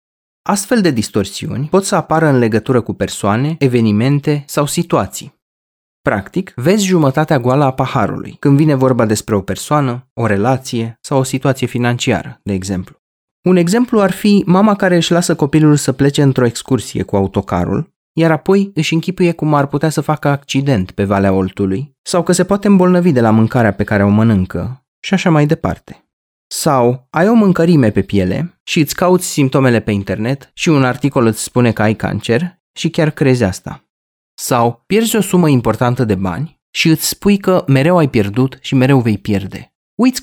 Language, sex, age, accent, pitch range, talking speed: Romanian, male, 20-39, native, 110-170 Hz, 180 wpm